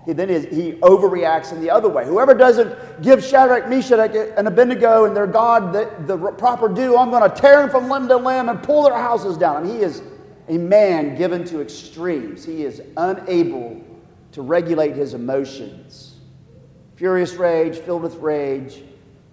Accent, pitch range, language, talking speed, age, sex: American, 145-210 Hz, English, 170 wpm, 50-69, male